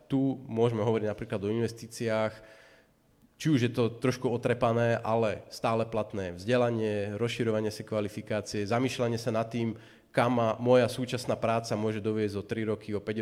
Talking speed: 155 wpm